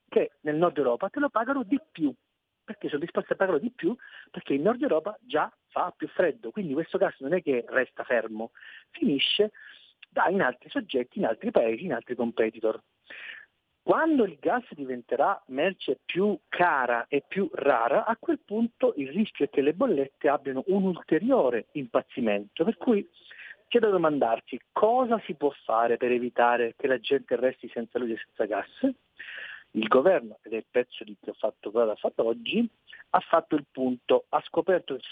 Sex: male